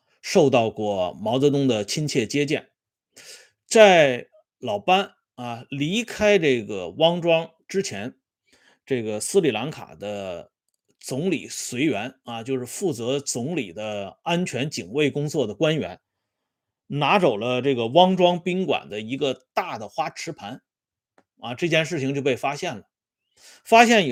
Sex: male